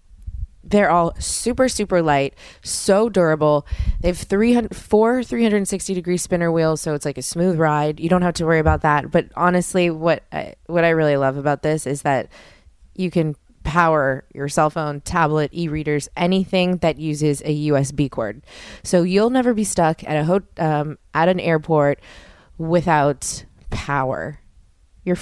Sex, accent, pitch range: female, American, 150-190 Hz